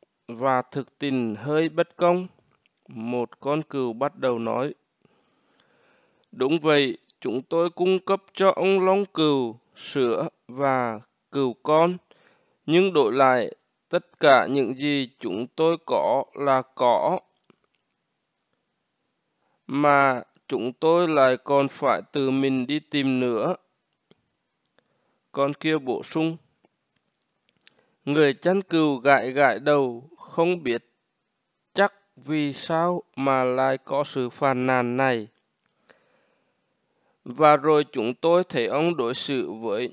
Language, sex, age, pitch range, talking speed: Vietnamese, male, 20-39, 125-165 Hz, 120 wpm